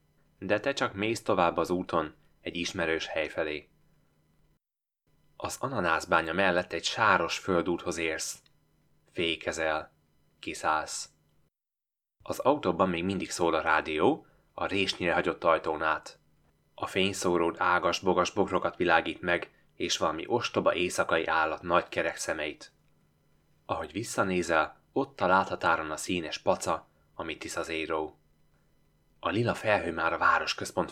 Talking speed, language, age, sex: 120 wpm, Hungarian, 20-39, male